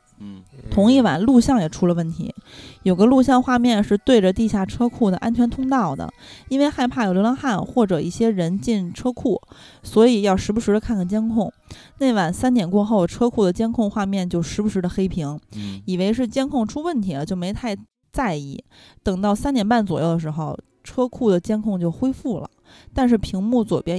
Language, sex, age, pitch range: Chinese, female, 20-39, 180-240 Hz